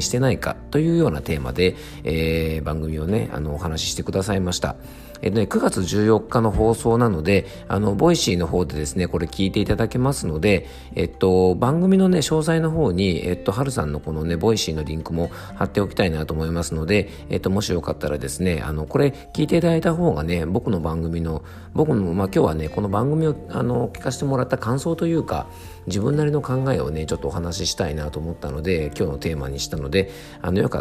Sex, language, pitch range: male, Japanese, 80-115 Hz